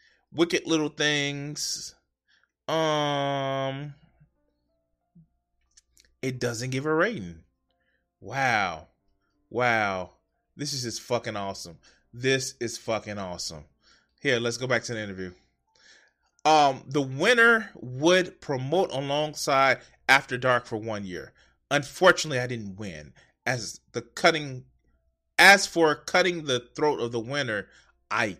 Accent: American